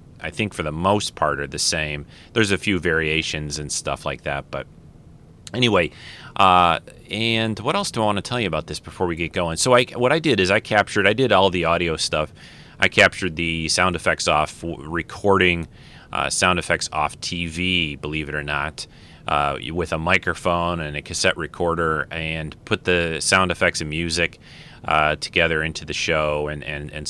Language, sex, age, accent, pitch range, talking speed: English, male, 30-49, American, 75-95 Hz, 195 wpm